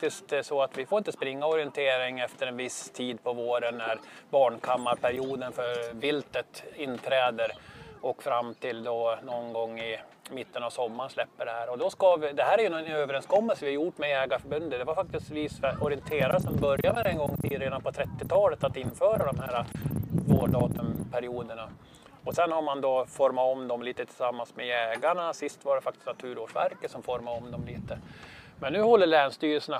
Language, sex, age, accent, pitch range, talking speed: Swedish, male, 20-39, native, 120-140 Hz, 185 wpm